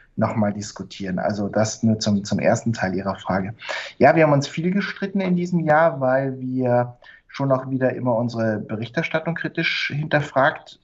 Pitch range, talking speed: 115-140 Hz, 165 wpm